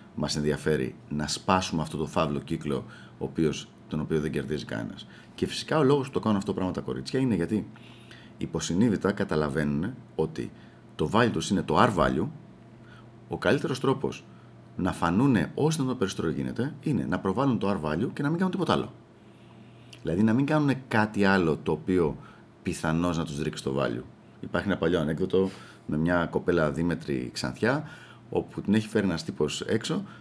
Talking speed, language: 175 wpm, Greek